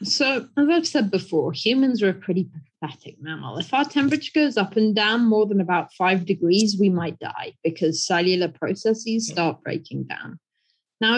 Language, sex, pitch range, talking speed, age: English, female, 180-225 Hz, 175 wpm, 20-39